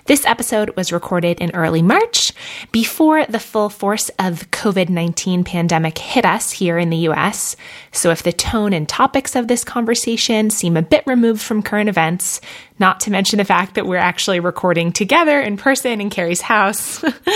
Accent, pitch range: American, 170-230 Hz